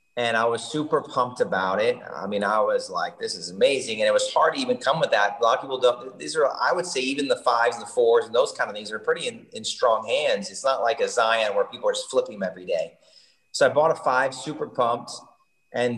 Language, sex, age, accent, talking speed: English, male, 30-49, American, 270 wpm